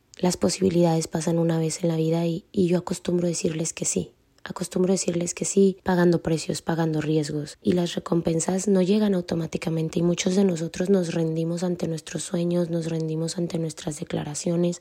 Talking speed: 175 wpm